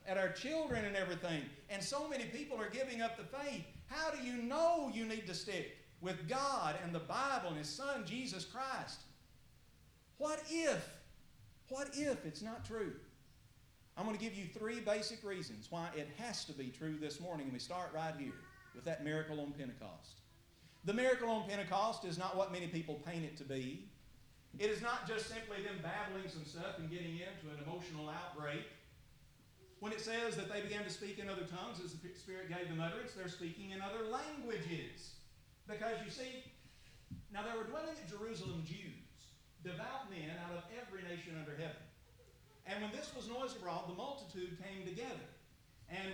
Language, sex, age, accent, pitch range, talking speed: English, male, 50-69, American, 165-230 Hz, 185 wpm